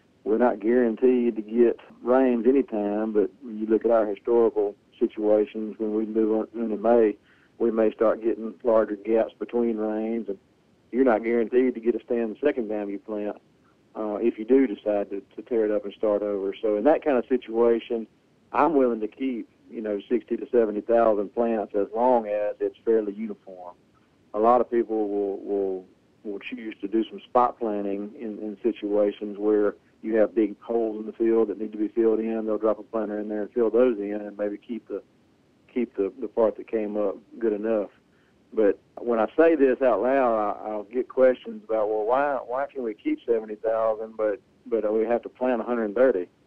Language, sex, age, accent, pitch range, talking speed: English, male, 40-59, American, 105-120 Hz, 205 wpm